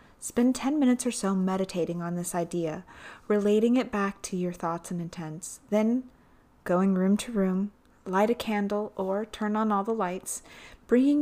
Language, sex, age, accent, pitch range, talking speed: English, female, 30-49, American, 185-225 Hz, 170 wpm